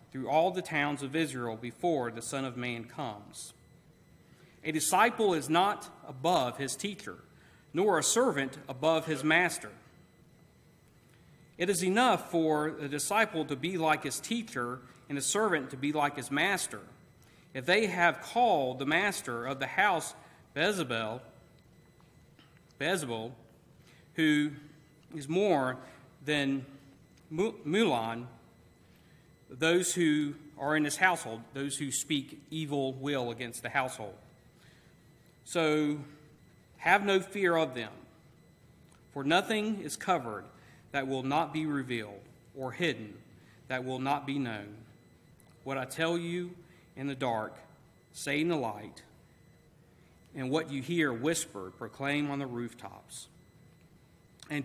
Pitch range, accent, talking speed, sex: 130-160 Hz, American, 125 wpm, male